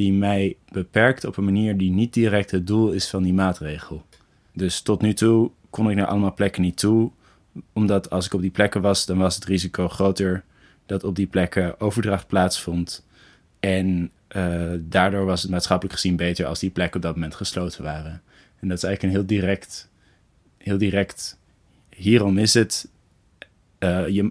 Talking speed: 180 wpm